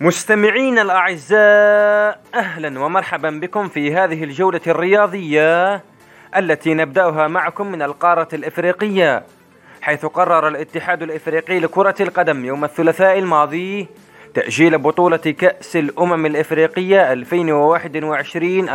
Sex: male